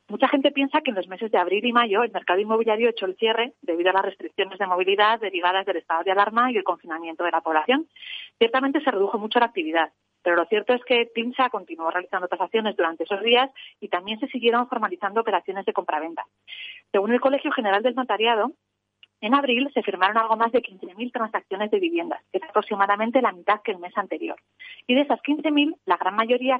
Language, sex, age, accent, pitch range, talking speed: Spanish, female, 30-49, Spanish, 195-255 Hz, 210 wpm